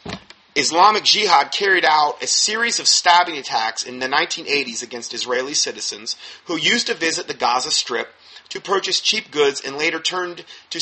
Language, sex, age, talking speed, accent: English, male, 30-49, 165 wpm, American